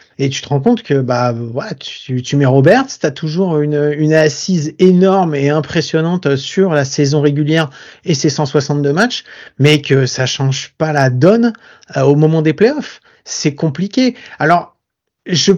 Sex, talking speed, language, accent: male, 175 wpm, French, French